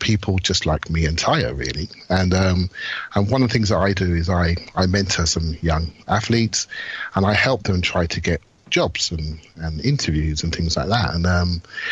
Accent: British